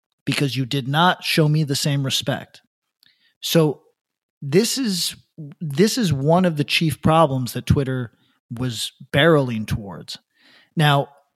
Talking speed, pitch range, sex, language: 130 wpm, 135-170 Hz, male, English